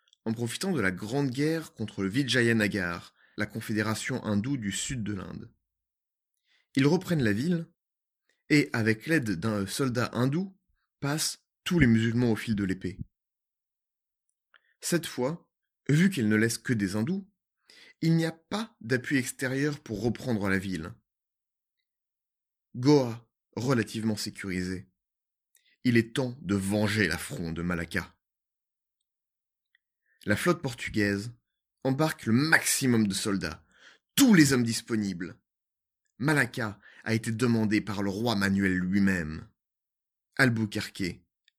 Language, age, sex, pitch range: French, 30-49, male, 95-130 Hz